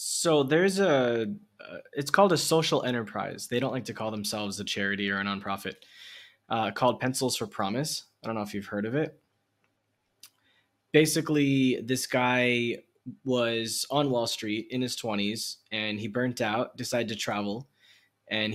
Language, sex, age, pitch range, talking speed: English, male, 20-39, 110-145 Hz, 160 wpm